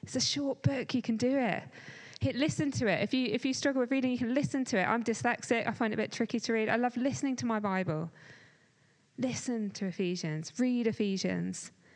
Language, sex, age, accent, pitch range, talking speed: English, female, 20-39, British, 170-225 Hz, 215 wpm